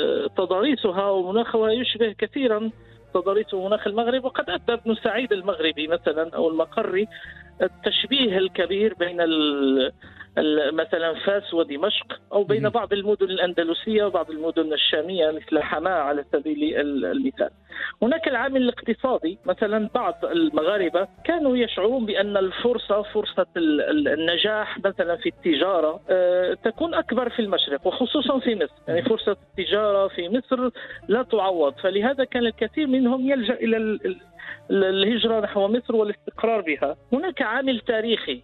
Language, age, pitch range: Arabic, 50-69, 185-245 Hz